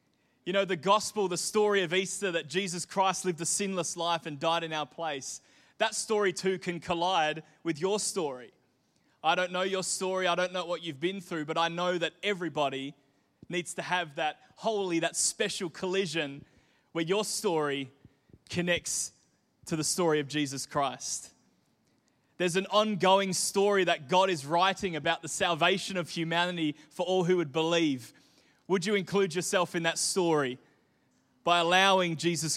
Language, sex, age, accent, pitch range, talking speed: English, male, 20-39, Australian, 165-195 Hz, 170 wpm